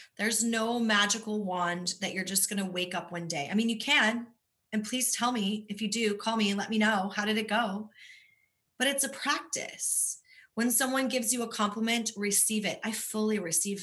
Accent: American